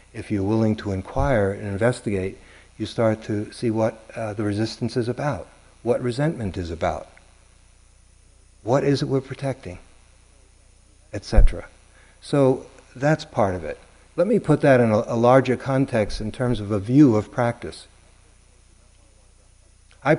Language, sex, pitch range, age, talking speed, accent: English, male, 95-115 Hz, 60-79, 145 wpm, American